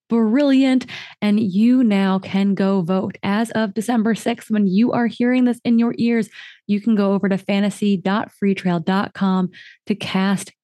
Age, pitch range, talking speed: 20-39, 190-220 Hz, 150 wpm